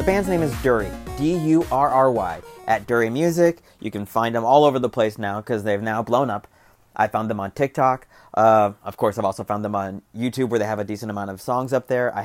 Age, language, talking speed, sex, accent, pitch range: 30-49, English, 235 wpm, male, American, 115-170 Hz